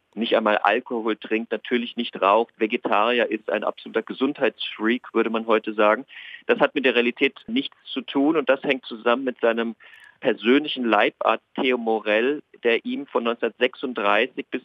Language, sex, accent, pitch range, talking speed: German, male, German, 115-135 Hz, 160 wpm